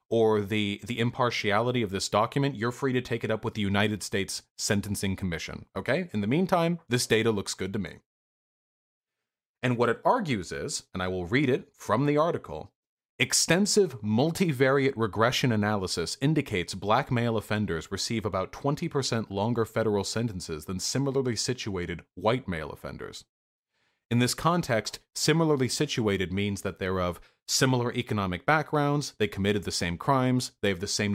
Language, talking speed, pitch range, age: English, 160 wpm, 100-135 Hz, 30-49